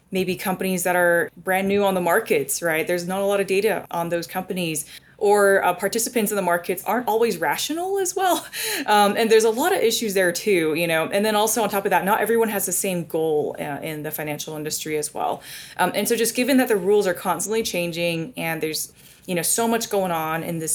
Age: 20-39